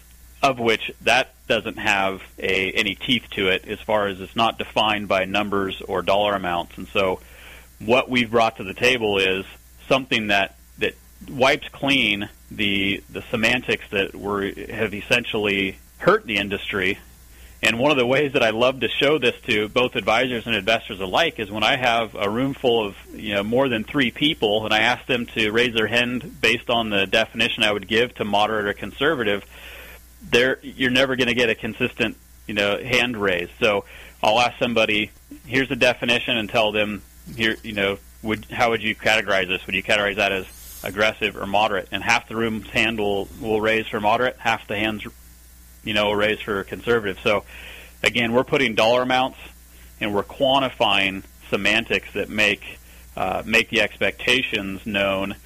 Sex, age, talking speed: male, 30-49, 185 wpm